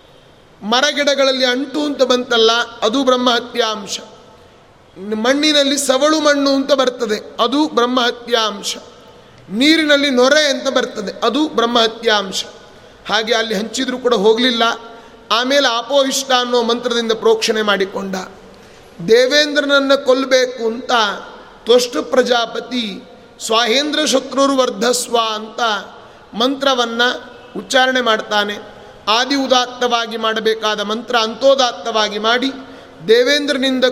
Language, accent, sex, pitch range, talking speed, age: Kannada, native, male, 225-265 Hz, 75 wpm, 30-49